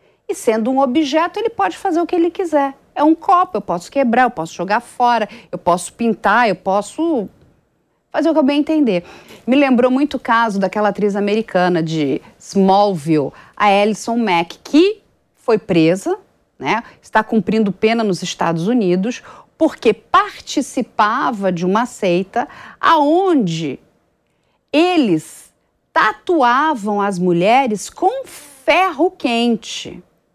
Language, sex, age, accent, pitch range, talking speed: English, female, 40-59, Brazilian, 195-290 Hz, 130 wpm